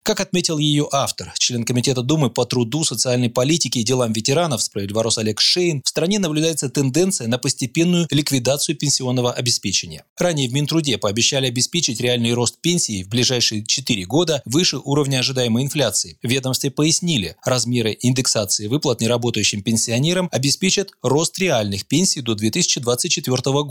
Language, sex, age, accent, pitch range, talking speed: Russian, male, 20-39, native, 115-160 Hz, 140 wpm